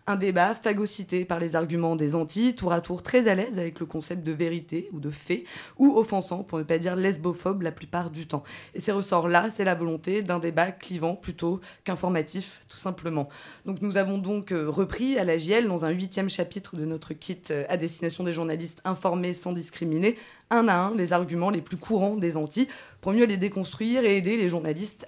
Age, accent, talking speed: 20-39, French, 210 wpm